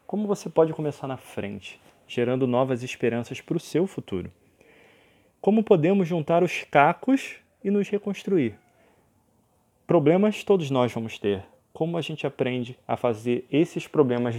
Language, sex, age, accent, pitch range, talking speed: Portuguese, male, 20-39, Brazilian, 125-170 Hz, 140 wpm